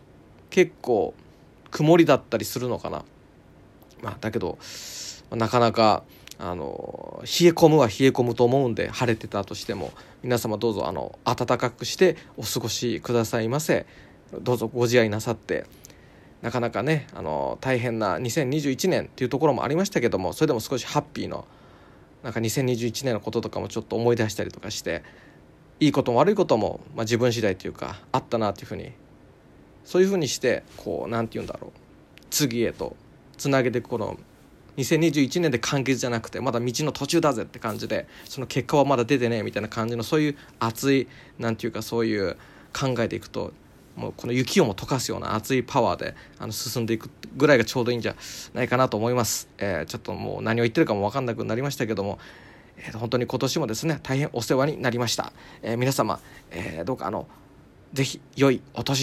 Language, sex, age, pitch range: Japanese, male, 20-39, 115-140 Hz